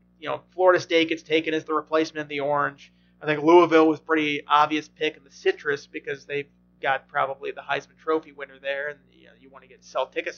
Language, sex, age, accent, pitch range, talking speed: English, male, 30-49, American, 145-170 Hz, 230 wpm